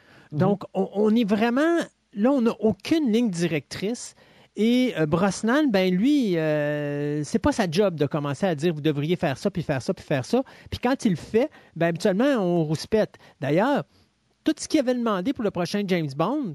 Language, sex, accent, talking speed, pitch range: French, male, Canadian, 205 wpm, 155-215 Hz